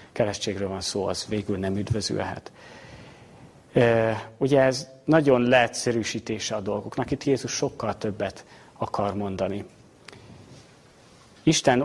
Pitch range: 110-130 Hz